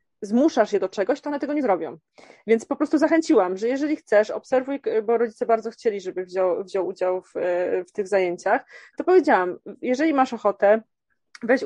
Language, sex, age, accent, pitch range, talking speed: Polish, female, 20-39, native, 195-245 Hz, 180 wpm